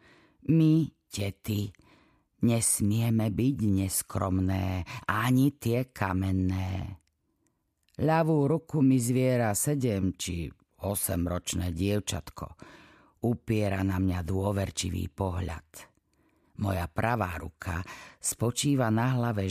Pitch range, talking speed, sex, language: 90-115 Hz, 85 wpm, female, Slovak